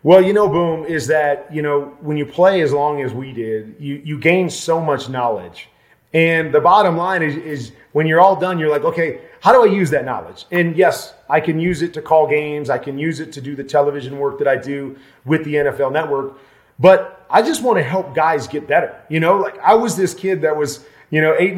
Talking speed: 240 wpm